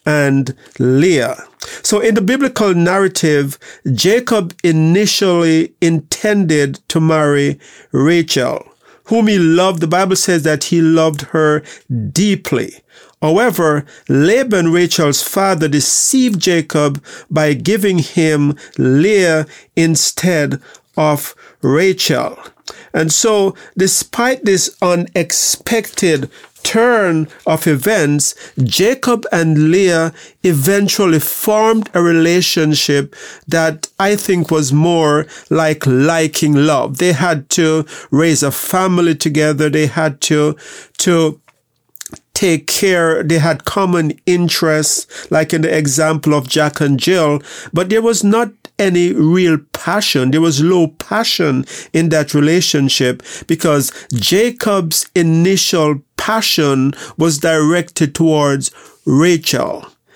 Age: 50-69